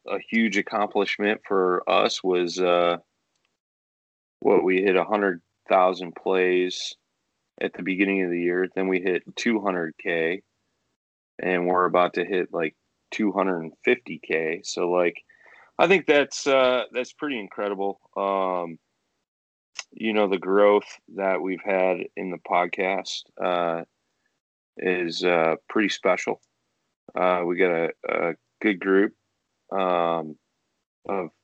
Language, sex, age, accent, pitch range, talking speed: English, male, 30-49, American, 85-100 Hz, 130 wpm